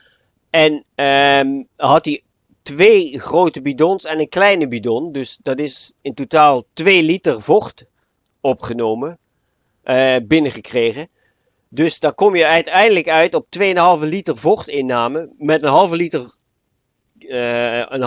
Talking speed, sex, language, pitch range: 125 wpm, male, Dutch, 115-165 Hz